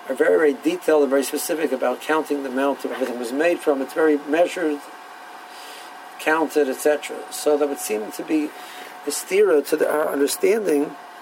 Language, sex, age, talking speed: English, male, 60-79, 170 wpm